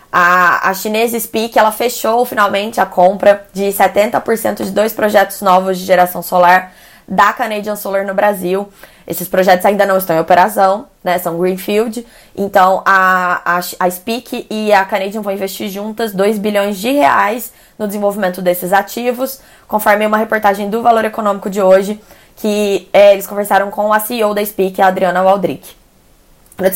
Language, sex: Portuguese, female